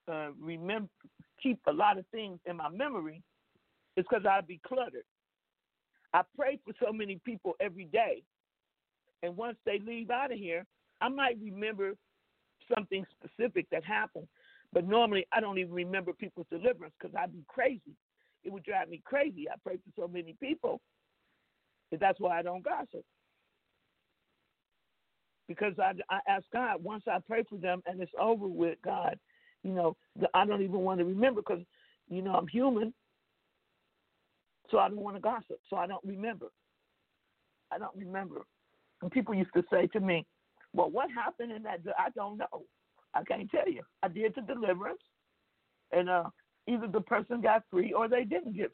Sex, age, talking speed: male, 50-69, 170 wpm